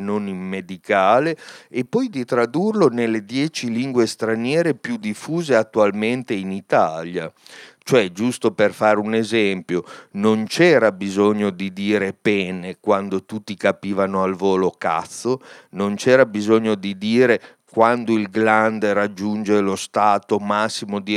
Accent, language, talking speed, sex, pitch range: native, Italian, 135 wpm, male, 100-120 Hz